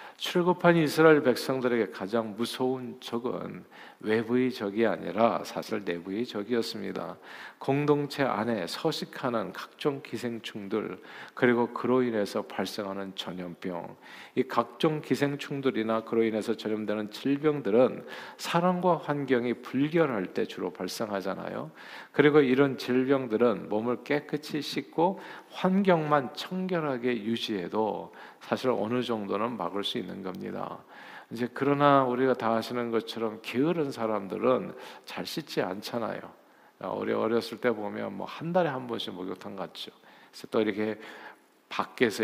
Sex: male